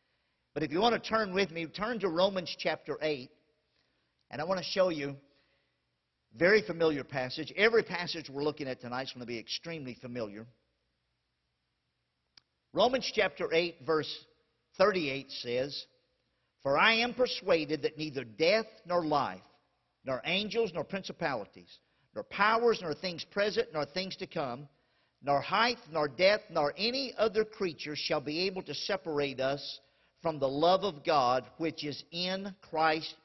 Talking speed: 155 wpm